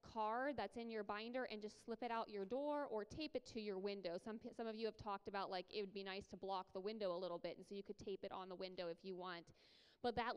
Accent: American